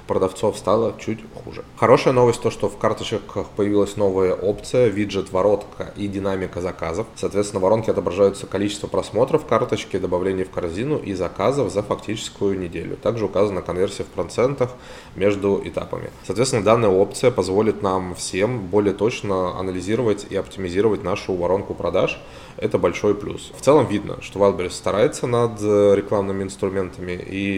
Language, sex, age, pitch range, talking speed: Russian, male, 20-39, 95-105 Hz, 145 wpm